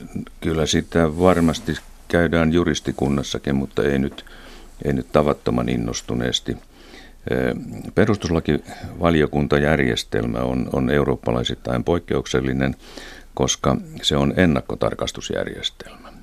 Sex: male